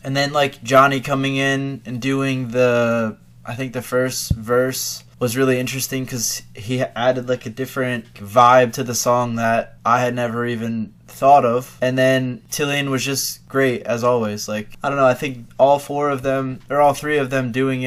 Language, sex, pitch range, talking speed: English, male, 115-130 Hz, 195 wpm